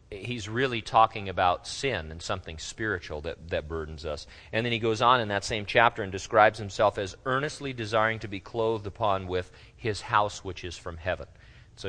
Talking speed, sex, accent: 195 wpm, male, American